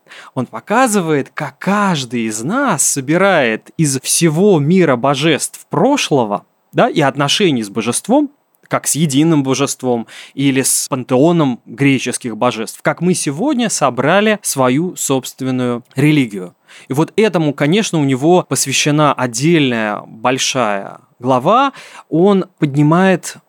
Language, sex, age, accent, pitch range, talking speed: Russian, male, 20-39, native, 125-170 Hz, 110 wpm